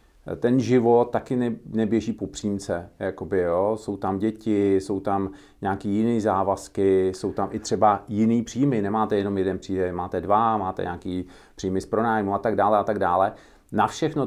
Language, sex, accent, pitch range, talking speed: Czech, male, native, 100-120 Hz, 155 wpm